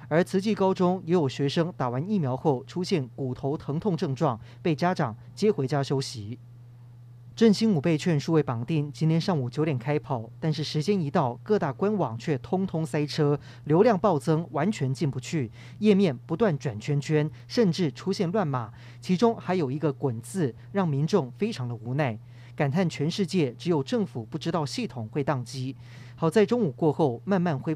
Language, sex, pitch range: Chinese, male, 130-180 Hz